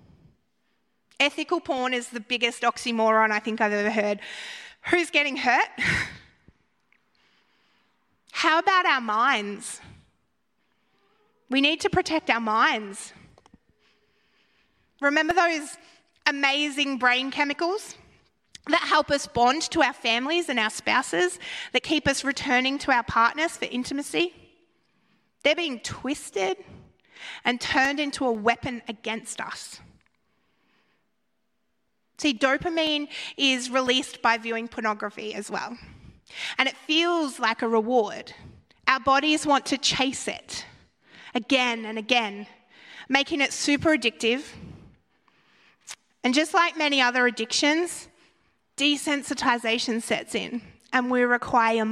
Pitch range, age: 225-295 Hz, 30-49